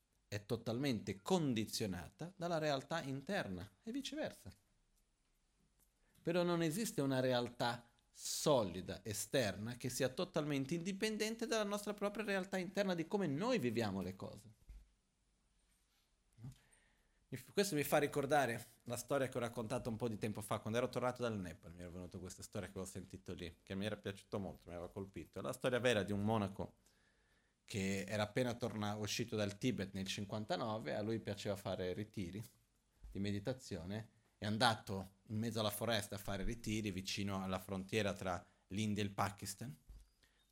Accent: native